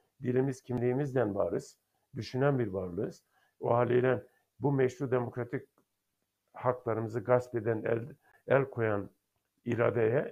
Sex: male